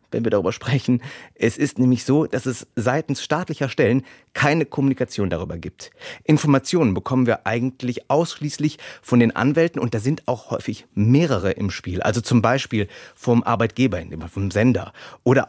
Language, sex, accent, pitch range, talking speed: German, male, German, 110-140 Hz, 160 wpm